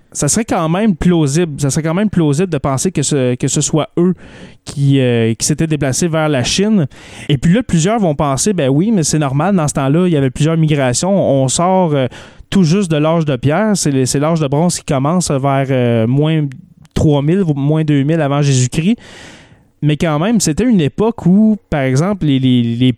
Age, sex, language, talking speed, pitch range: 30-49, male, French, 210 wpm, 135-175 Hz